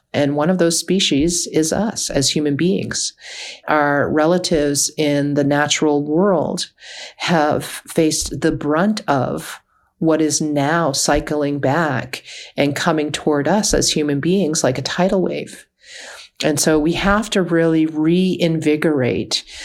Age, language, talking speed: 40-59, English, 135 wpm